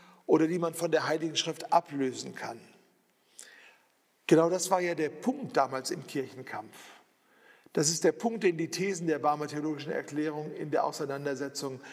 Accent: German